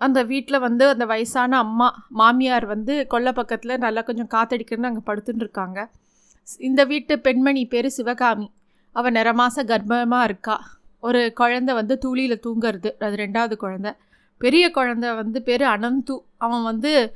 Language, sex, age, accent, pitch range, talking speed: Tamil, female, 20-39, native, 220-260 Hz, 145 wpm